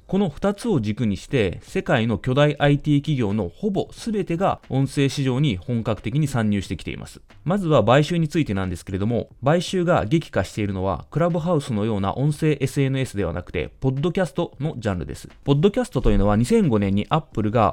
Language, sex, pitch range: Japanese, male, 110-160 Hz